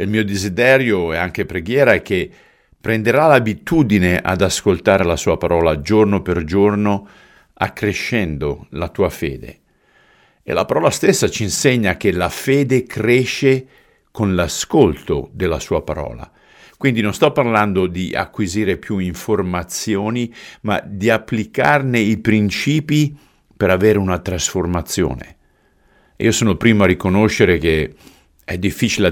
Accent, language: native, Italian